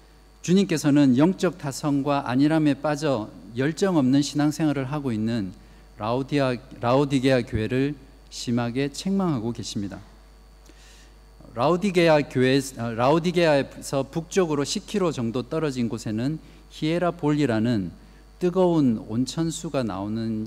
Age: 50-69